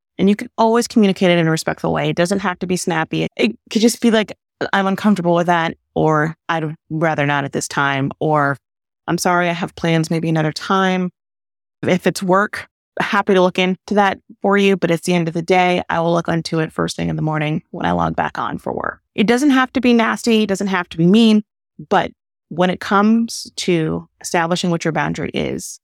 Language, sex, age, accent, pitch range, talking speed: English, female, 30-49, American, 155-205 Hz, 225 wpm